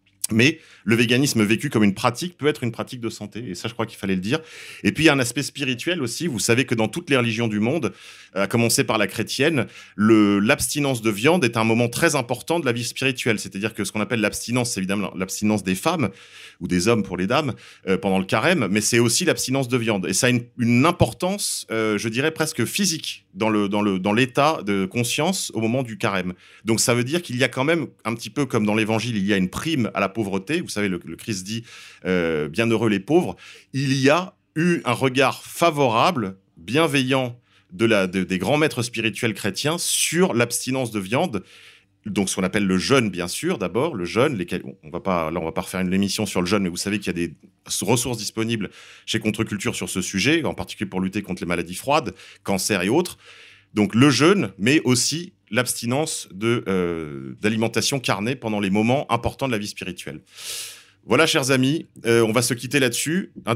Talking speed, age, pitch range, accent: 225 wpm, 30-49, 100-130 Hz, French